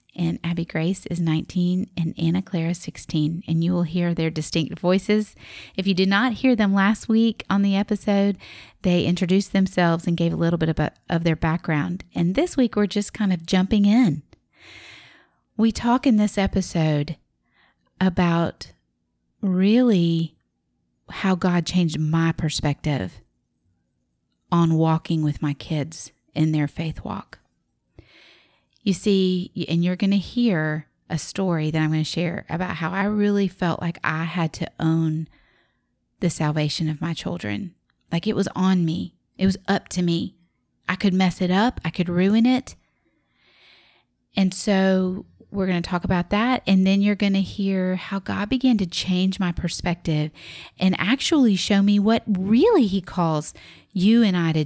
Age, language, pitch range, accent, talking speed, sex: 30-49, English, 160-200 Hz, American, 165 wpm, female